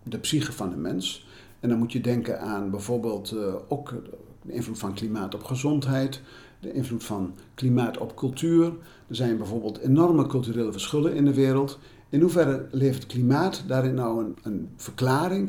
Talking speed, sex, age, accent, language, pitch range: 165 wpm, male, 50-69, Dutch, Dutch, 110-140 Hz